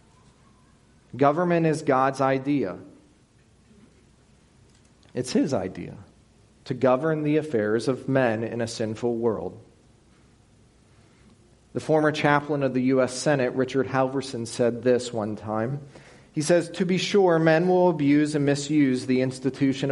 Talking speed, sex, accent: 125 wpm, male, American